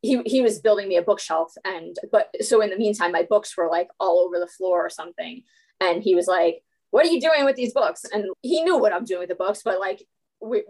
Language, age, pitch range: English, 20-39, 190-285 Hz